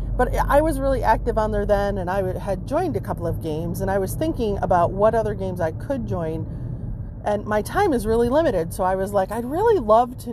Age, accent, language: 30-49, American, English